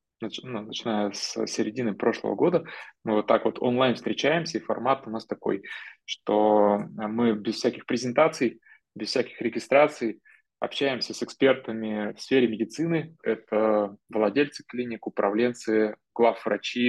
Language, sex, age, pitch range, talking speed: Russian, male, 20-39, 105-120 Hz, 125 wpm